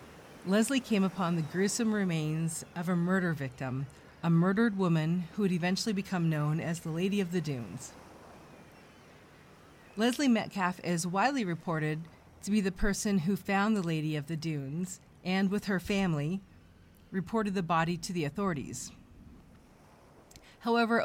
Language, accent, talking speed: English, American, 145 wpm